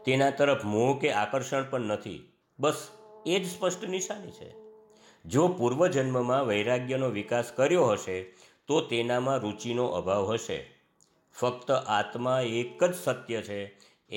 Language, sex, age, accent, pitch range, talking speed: Gujarati, male, 50-69, native, 105-140 Hz, 120 wpm